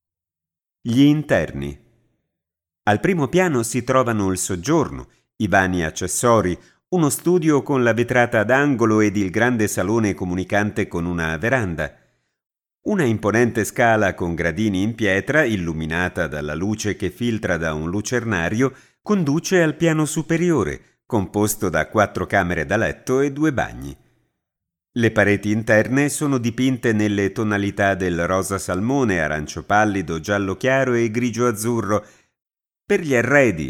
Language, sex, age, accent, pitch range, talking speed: Italian, male, 50-69, native, 90-125 Hz, 135 wpm